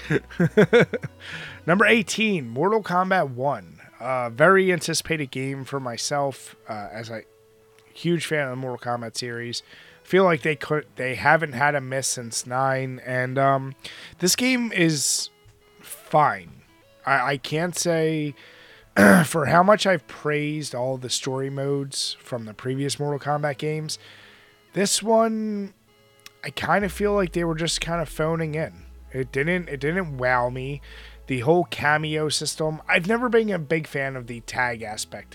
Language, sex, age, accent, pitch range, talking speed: English, male, 20-39, American, 125-165 Hz, 155 wpm